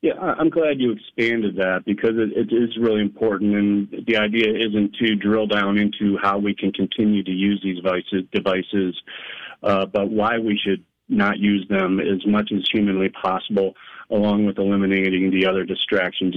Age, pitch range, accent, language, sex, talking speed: 40-59, 95-105 Hz, American, English, male, 165 wpm